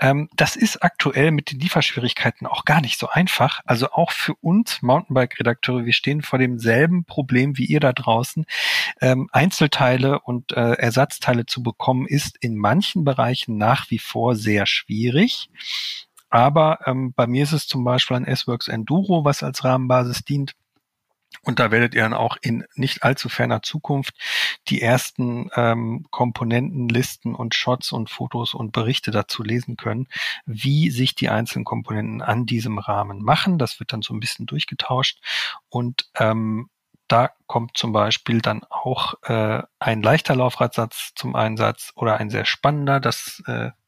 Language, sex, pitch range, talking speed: German, male, 115-140 Hz, 155 wpm